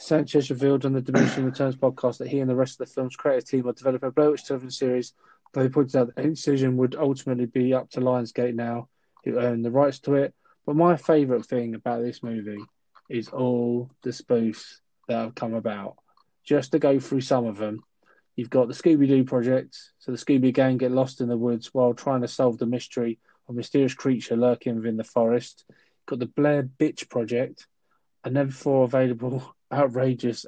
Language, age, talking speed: English, 20-39, 205 wpm